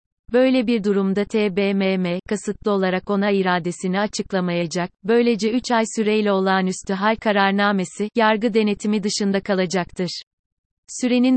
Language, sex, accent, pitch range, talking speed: Turkish, female, native, 195-225 Hz, 110 wpm